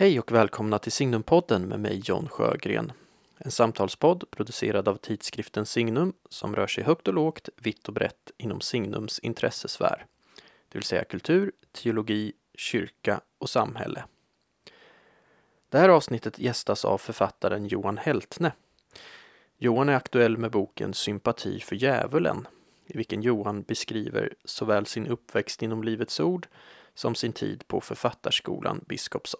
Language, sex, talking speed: Swedish, male, 135 wpm